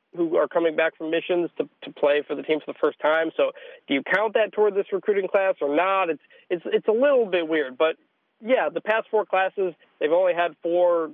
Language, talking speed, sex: English, 235 wpm, male